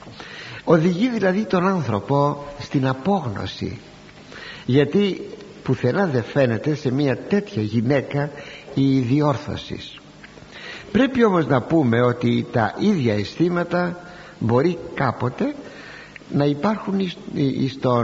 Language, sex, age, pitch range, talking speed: Greek, male, 60-79, 125-185 Hz, 95 wpm